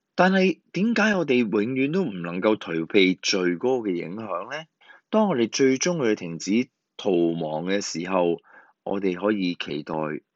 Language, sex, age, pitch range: Chinese, male, 20-39, 85-135 Hz